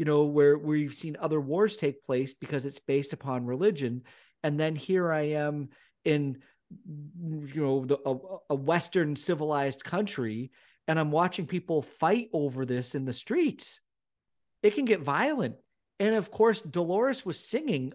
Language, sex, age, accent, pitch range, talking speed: English, male, 40-59, American, 140-180 Hz, 155 wpm